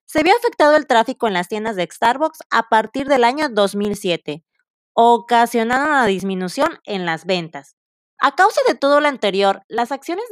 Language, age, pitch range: Spanish, 30-49, 215-285 Hz